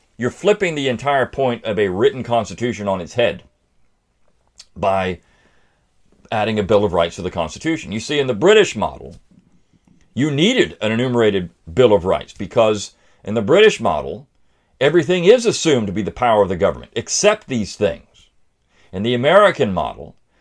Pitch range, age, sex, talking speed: 100-150 Hz, 50-69, male, 165 wpm